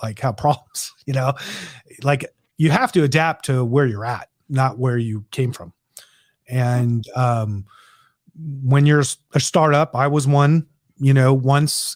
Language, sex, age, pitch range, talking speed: English, male, 30-49, 140-210 Hz, 155 wpm